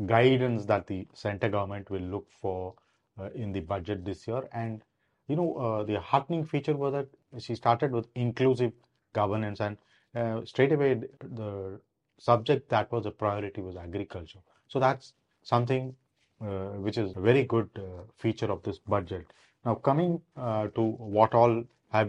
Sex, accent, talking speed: male, Indian, 165 wpm